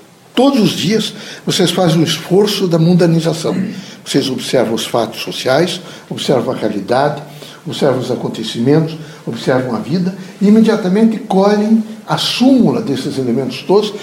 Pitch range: 175-225 Hz